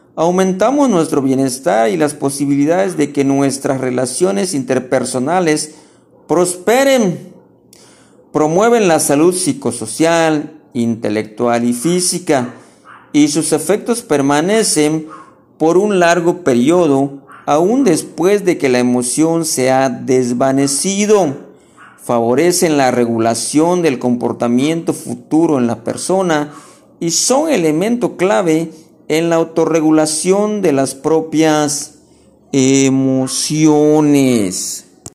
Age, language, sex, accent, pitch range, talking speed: 50-69, Spanish, male, Mexican, 135-170 Hz, 95 wpm